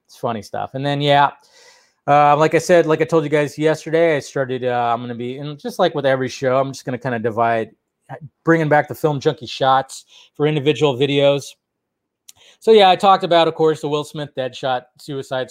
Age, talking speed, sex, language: 30-49, 225 wpm, male, English